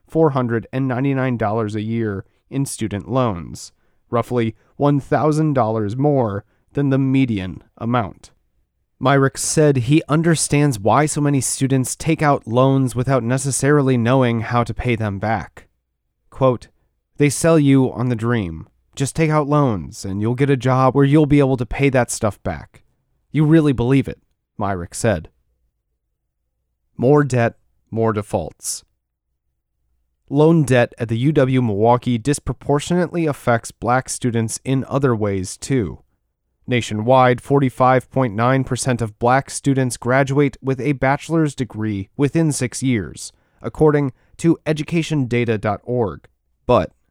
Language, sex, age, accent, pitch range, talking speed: English, male, 30-49, American, 115-140 Hz, 120 wpm